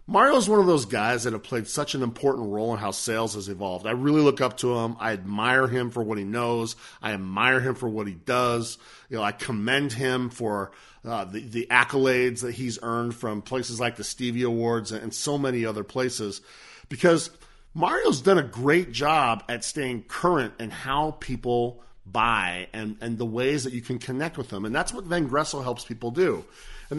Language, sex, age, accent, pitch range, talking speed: English, male, 40-59, American, 115-150 Hz, 205 wpm